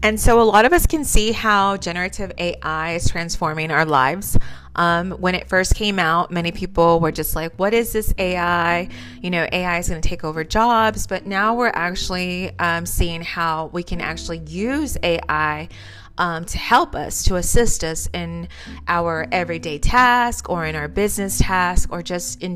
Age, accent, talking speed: 30-49, American, 185 wpm